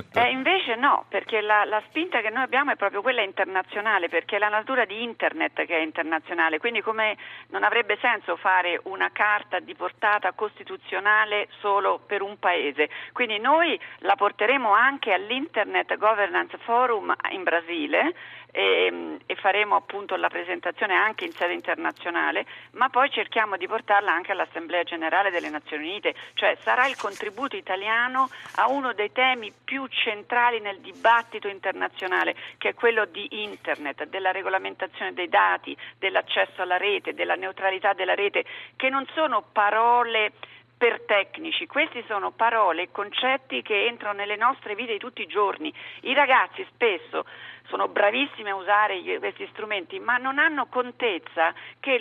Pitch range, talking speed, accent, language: 200-275 Hz, 155 wpm, native, Italian